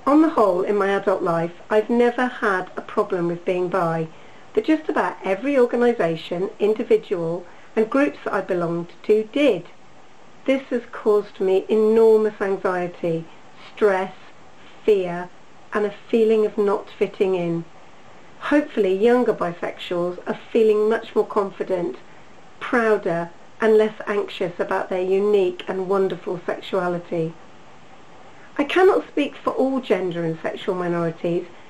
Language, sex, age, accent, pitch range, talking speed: English, female, 40-59, British, 185-225 Hz, 135 wpm